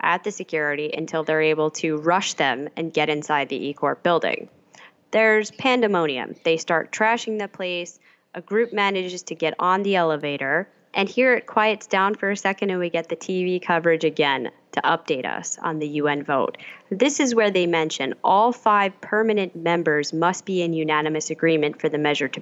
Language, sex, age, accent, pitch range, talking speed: English, female, 10-29, American, 155-190 Hz, 185 wpm